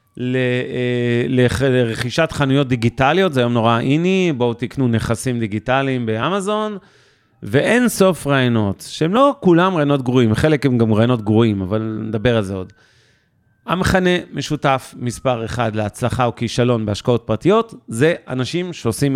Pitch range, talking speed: 115-150 Hz, 135 wpm